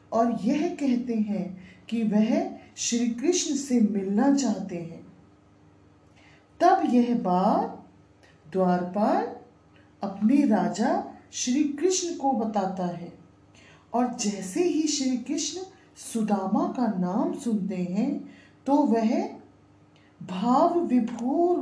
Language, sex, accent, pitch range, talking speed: Hindi, female, native, 200-285 Hz, 105 wpm